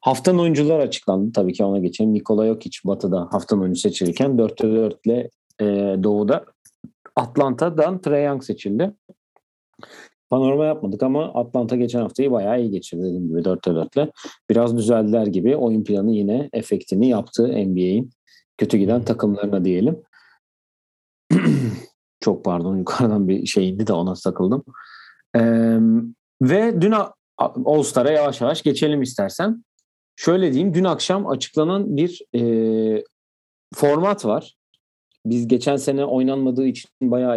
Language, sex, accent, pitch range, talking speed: Turkish, male, native, 105-150 Hz, 130 wpm